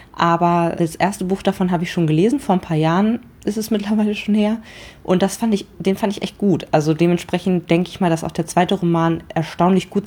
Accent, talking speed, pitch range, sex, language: German, 230 wpm, 160-195 Hz, female, German